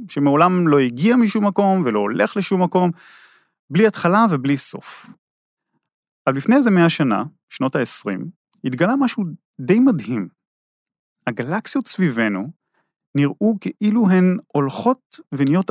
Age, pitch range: 30-49, 140-220 Hz